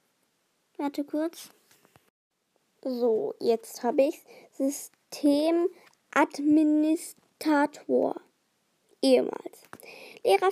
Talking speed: 65 wpm